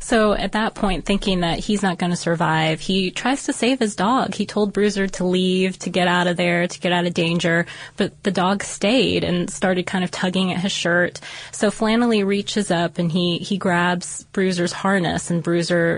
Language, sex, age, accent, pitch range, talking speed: English, female, 20-39, American, 170-195 Hz, 210 wpm